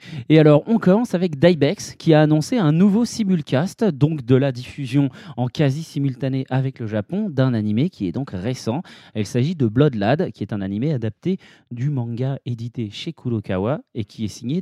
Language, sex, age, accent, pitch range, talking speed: French, male, 30-49, French, 120-160 Hz, 185 wpm